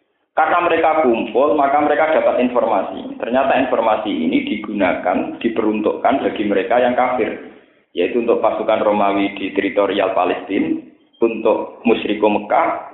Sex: male